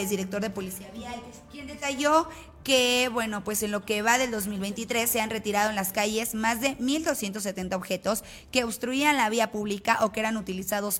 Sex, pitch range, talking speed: female, 195-245 Hz, 185 wpm